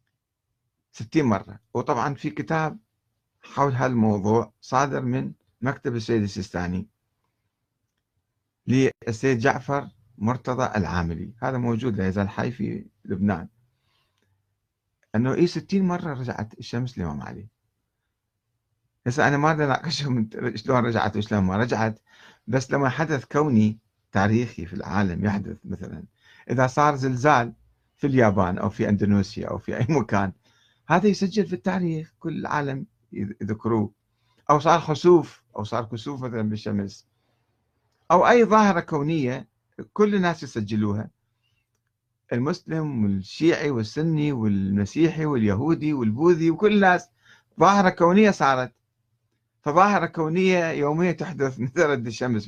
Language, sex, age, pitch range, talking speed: Arabic, male, 60-79, 110-150 Hz, 115 wpm